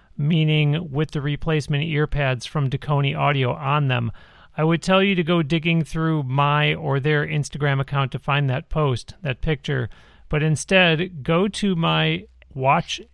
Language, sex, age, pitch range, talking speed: English, male, 40-59, 135-160 Hz, 165 wpm